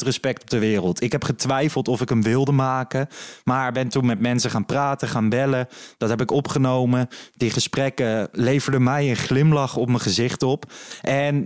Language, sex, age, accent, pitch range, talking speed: Dutch, male, 20-39, Dutch, 115-140 Hz, 190 wpm